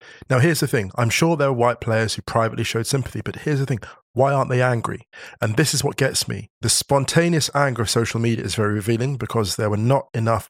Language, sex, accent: English, male, British